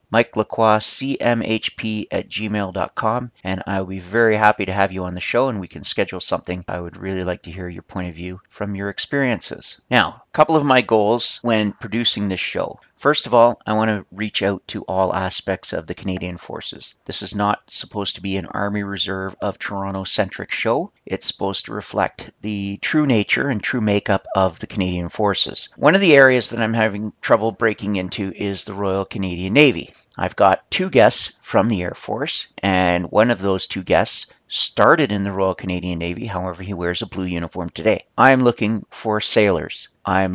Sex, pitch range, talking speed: male, 95-115 Hz, 195 wpm